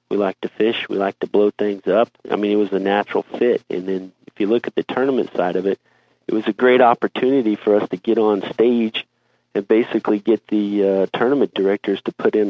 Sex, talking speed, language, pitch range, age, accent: male, 235 wpm, English, 95-110 Hz, 40-59, American